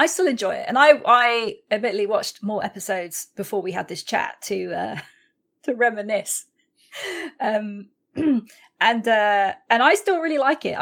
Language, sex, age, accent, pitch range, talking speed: English, female, 30-49, British, 190-250 Hz, 160 wpm